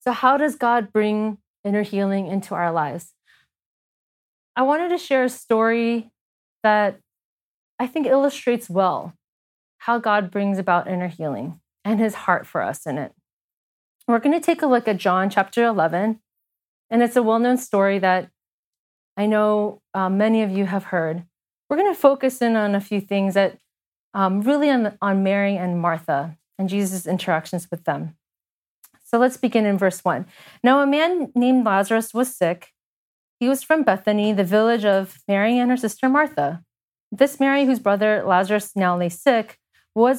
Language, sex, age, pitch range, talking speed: English, female, 30-49, 190-250 Hz, 170 wpm